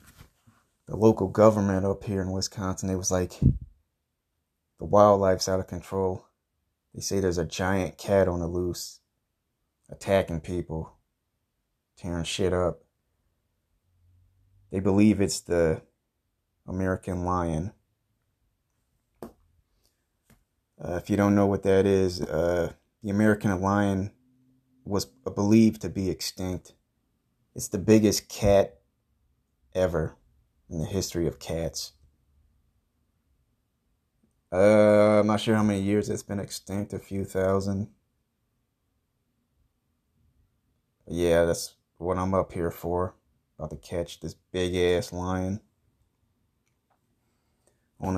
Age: 30-49